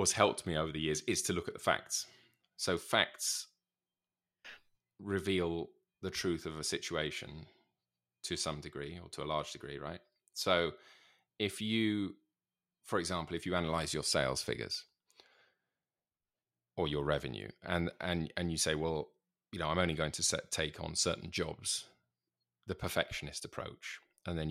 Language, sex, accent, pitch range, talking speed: English, male, British, 75-85 Hz, 160 wpm